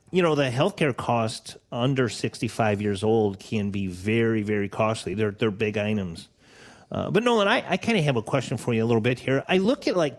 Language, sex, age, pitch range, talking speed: English, male, 40-59, 115-145 Hz, 230 wpm